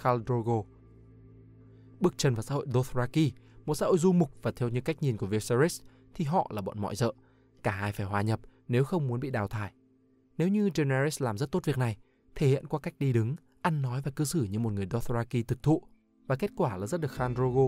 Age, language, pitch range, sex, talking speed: 20-39, Vietnamese, 115-150 Hz, male, 230 wpm